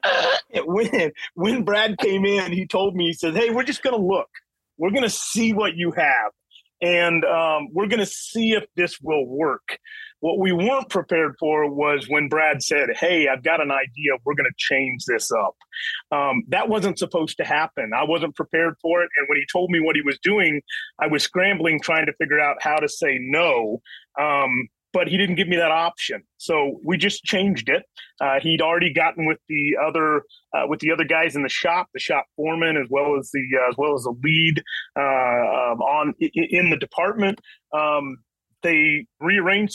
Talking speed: 195 wpm